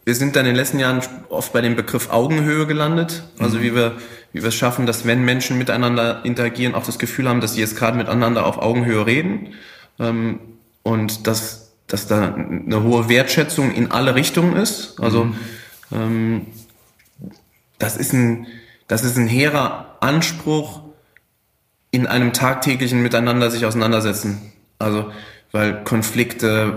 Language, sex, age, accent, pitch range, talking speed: German, male, 20-39, German, 110-125 Hz, 150 wpm